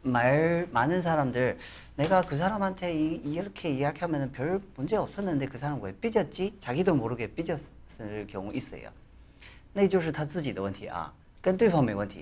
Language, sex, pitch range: Korean, male, 95-150 Hz